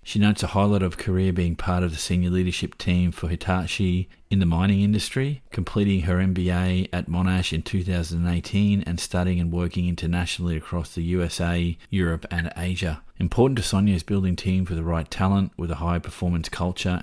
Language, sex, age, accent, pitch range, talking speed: English, male, 30-49, Australian, 80-95 Hz, 185 wpm